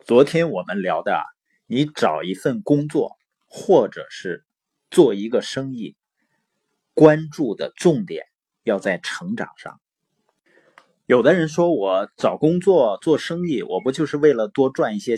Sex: male